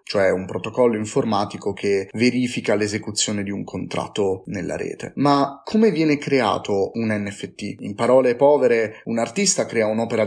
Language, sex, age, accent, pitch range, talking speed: Italian, male, 30-49, native, 110-135 Hz, 145 wpm